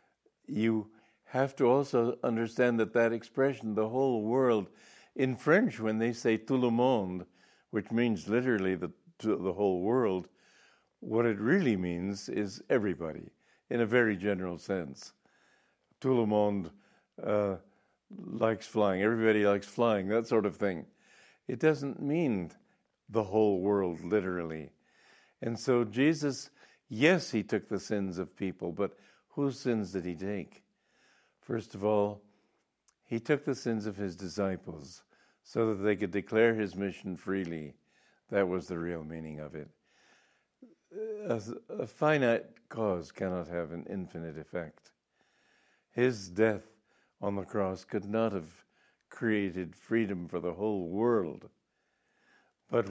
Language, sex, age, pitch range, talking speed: English, male, 60-79, 95-115 Hz, 140 wpm